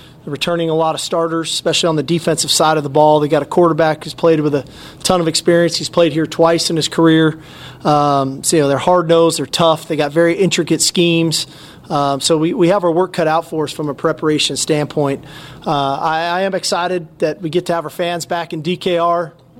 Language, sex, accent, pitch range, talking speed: English, male, American, 155-175 Hz, 235 wpm